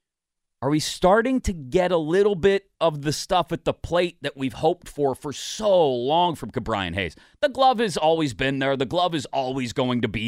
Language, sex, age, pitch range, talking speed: English, male, 30-49, 110-165 Hz, 215 wpm